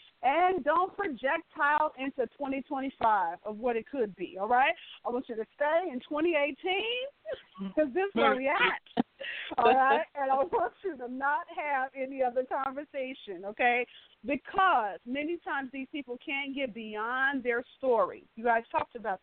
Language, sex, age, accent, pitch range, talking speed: English, female, 40-59, American, 225-290 Hz, 160 wpm